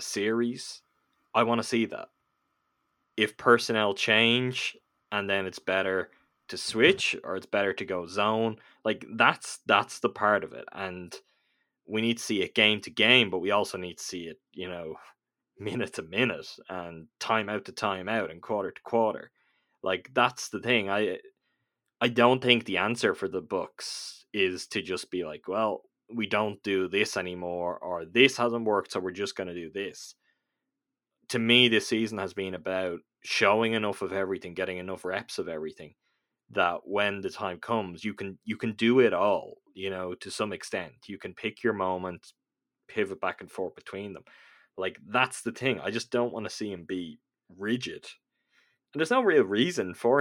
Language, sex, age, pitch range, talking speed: English, male, 10-29, 90-115 Hz, 190 wpm